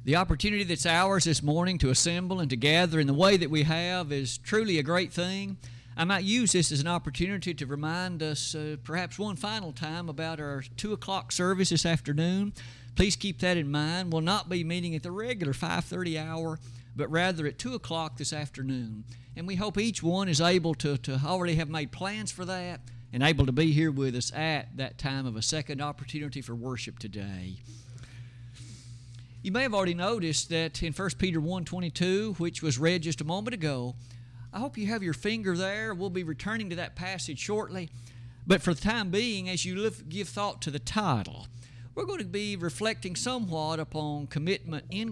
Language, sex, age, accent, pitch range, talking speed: English, male, 50-69, American, 135-185 Hz, 200 wpm